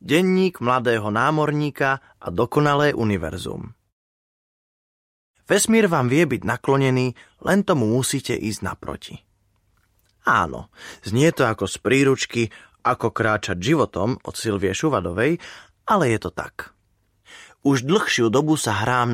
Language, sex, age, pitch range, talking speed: Slovak, male, 20-39, 100-160 Hz, 115 wpm